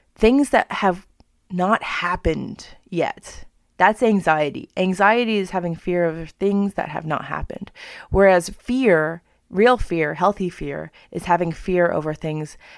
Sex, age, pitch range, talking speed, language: female, 30-49, 165-195 Hz, 135 wpm, English